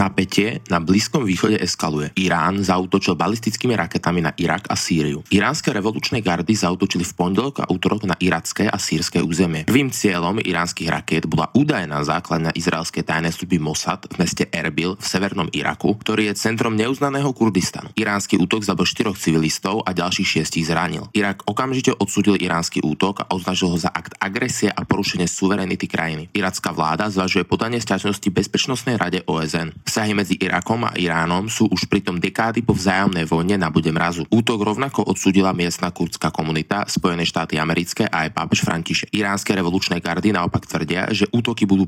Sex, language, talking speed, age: male, Slovak, 165 wpm, 20-39